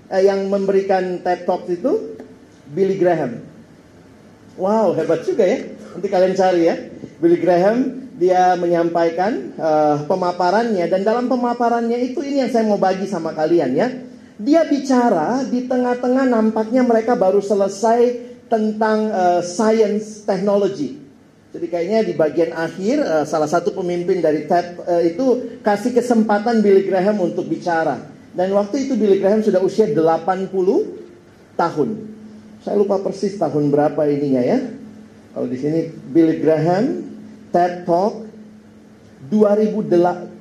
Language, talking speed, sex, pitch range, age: Indonesian, 130 wpm, male, 170-230 Hz, 40-59